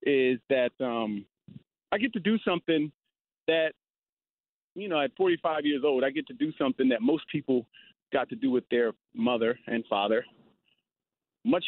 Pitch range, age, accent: 140-220 Hz, 40-59, American